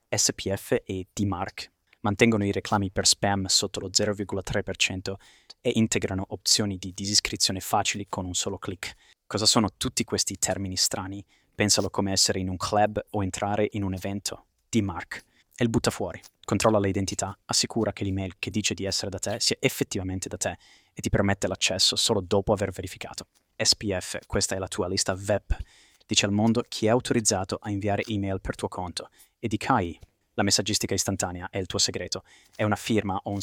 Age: 20-39